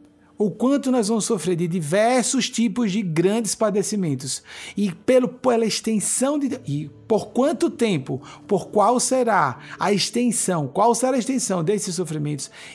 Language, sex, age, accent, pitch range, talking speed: Portuguese, male, 50-69, Brazilian, 155-215 Hz, 140 wpm